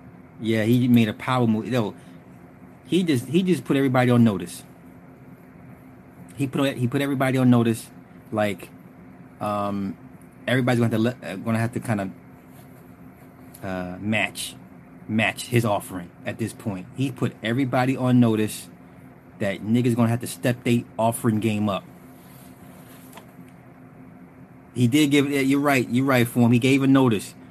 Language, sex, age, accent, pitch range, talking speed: English, male, 30-49, American, 100-125 Hz, 160 wpm